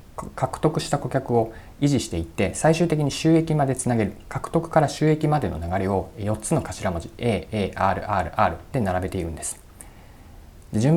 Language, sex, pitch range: Japanese, male, 95-130 Hz